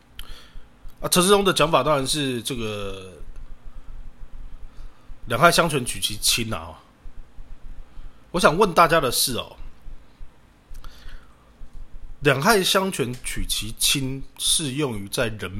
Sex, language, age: male, Chinese, 20-39